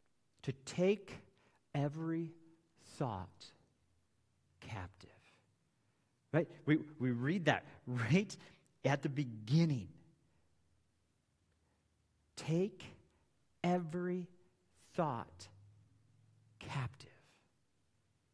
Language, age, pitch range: English, 50-69, 105-145 Hz